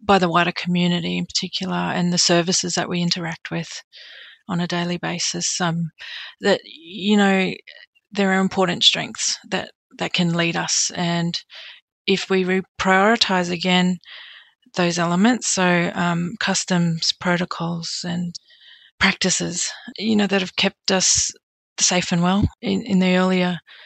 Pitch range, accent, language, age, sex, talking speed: 175-195 Hz, Australian, English, 30-49, female, 140 wpm